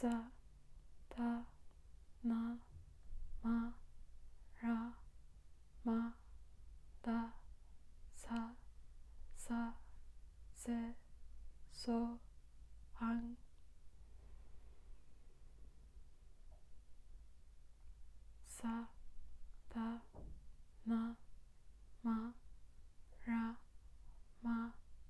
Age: 20-39